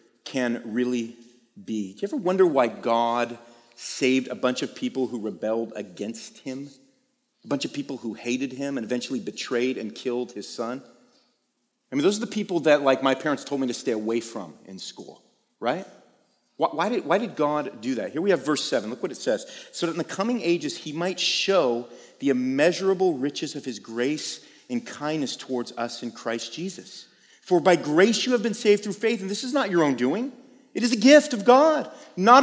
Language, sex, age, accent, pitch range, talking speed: English, male, 30-49, American, 125-195 Hz, 205 wpm